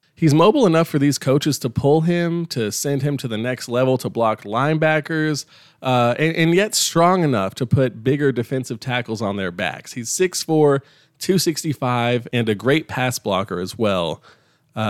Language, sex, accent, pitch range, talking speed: English, male, American, 110-150 Hz, 175 wpm